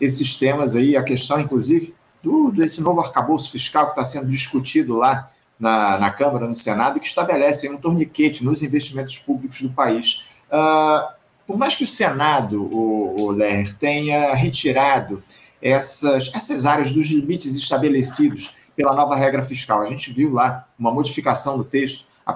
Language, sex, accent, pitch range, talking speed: Portuguese, male, Brazilian, 130-165 Hz, 160 wpm